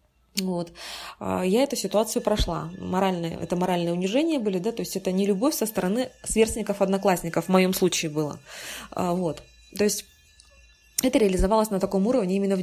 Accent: native